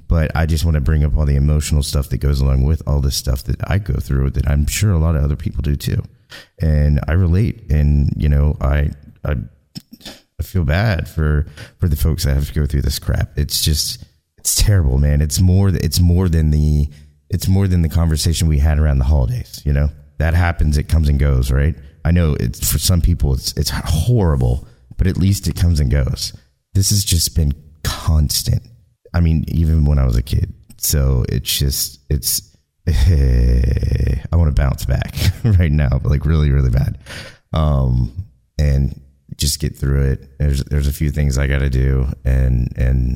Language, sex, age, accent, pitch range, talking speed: English, male, 30-49, American, 70-80 Hz, 205 wpm